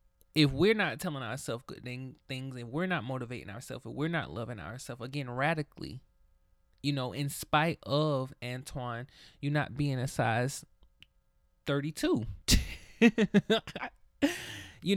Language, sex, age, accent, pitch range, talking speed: English, male, 20-39, American, 125-155 Hz, 130 wpm